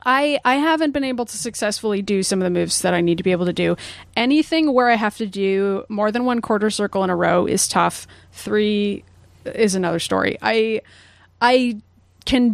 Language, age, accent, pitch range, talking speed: English, 30-49, American, 200-245 Hz, 205 wpm